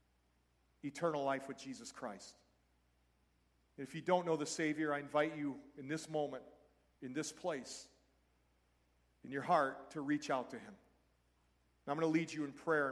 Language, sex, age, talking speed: English, male, 40-59, 165 wpm